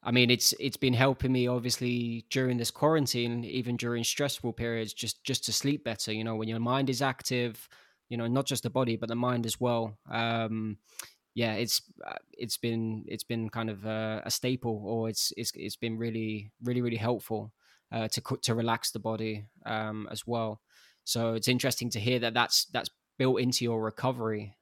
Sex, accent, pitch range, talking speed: male, British, 115-125 Hz, 195 wpm